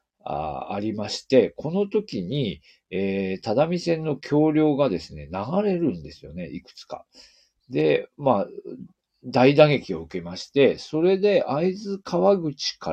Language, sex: Japanese, male